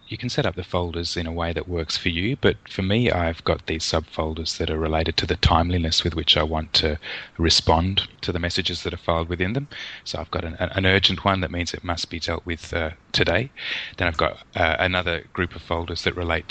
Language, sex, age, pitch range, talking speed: English, male, 20-39, 85-100 Hz, 240 wpm